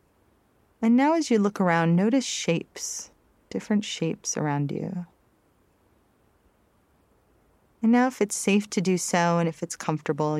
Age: 30-49